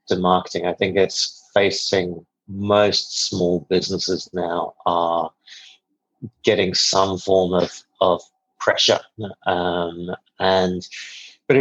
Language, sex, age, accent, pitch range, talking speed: English, male, 30-49, British, 90-110 Hz, 105 wpm